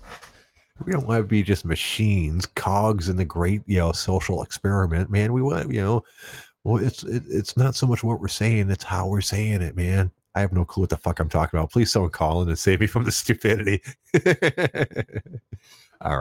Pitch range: 85-110 Hz